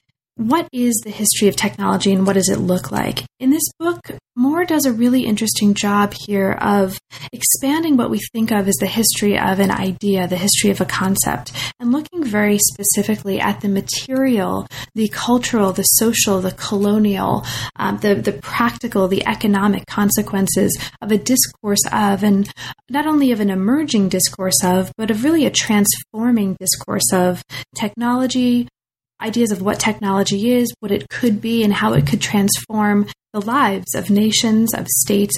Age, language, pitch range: 20-39, English, 195-230 Hz